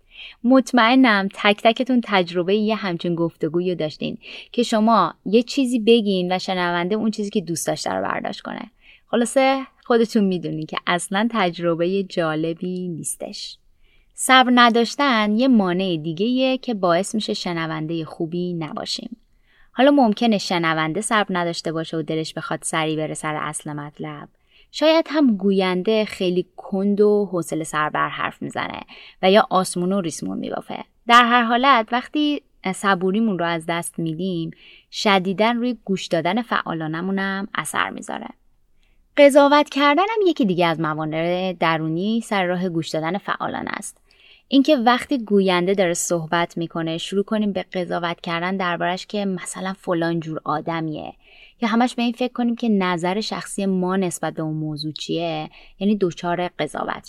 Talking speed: 145 wpm